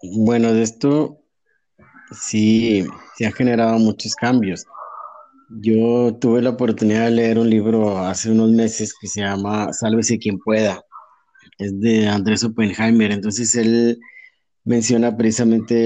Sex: male